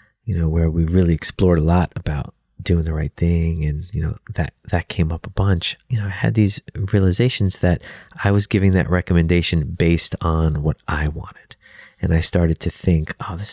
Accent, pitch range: American, 80-100 Hz